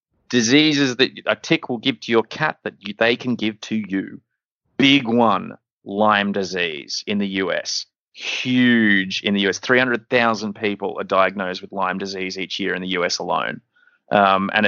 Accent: Australian